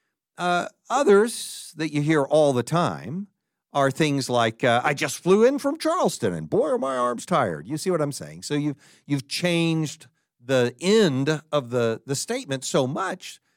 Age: 50-69